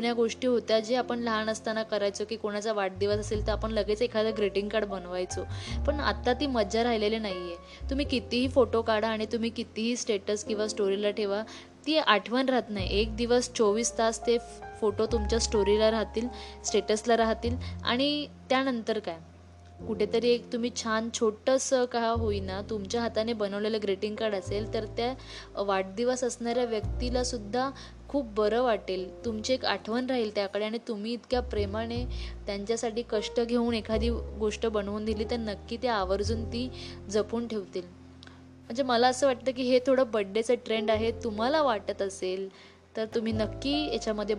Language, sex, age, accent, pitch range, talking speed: Marathi, female, 20-39, native, 195-235 Hz, 95 wpm